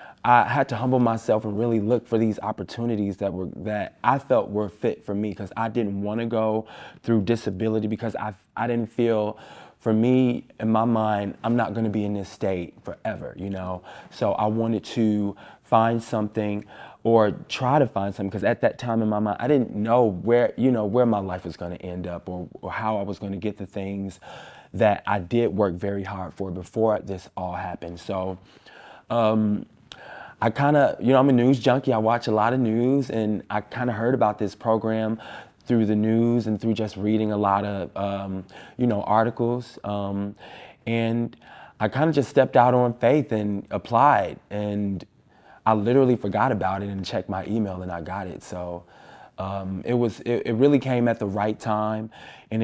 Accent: American